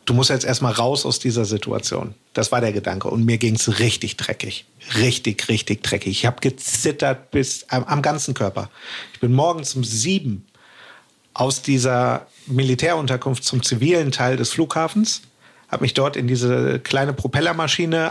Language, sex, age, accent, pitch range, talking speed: German, male, 50-69, German, 120-150 Hz, 160 wpm